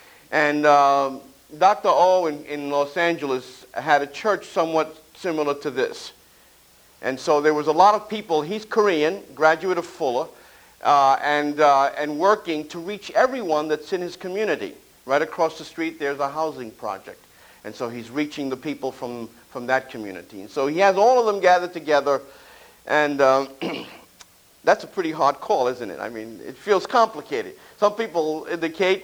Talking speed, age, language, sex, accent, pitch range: 175 wpm, 50-69, English, male, American, 140-185 Hz